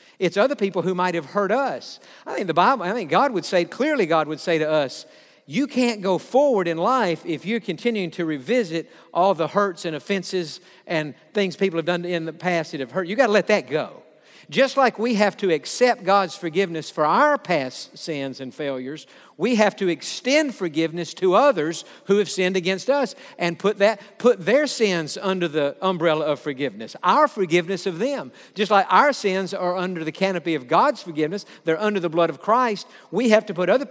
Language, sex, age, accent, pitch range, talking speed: English, male, 50-69, American, 170-215 Hz, 210 wpm